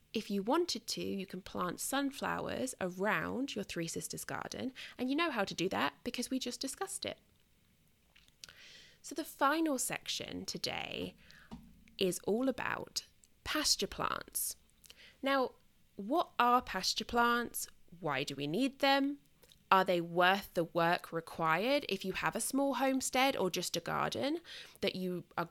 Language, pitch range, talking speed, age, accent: English, 175-265 Hz, 150 wpm, 20-39, British